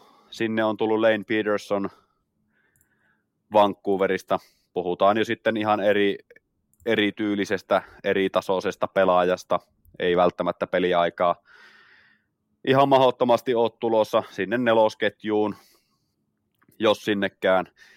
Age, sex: 20-39, male